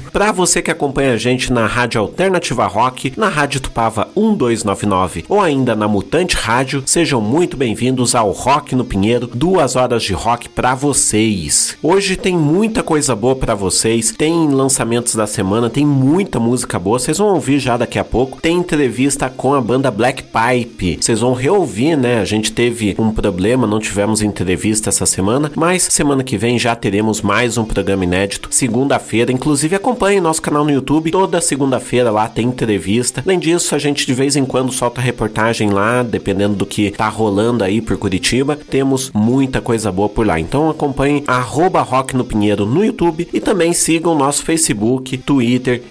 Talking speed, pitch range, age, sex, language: 175 wpm, 105-140 Hz, 40-59, male, Portuguese